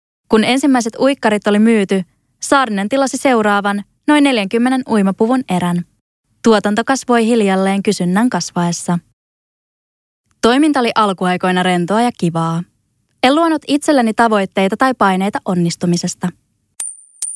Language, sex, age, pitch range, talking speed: Finnish, female, 20-39, 180-240 Hz, 105 wpm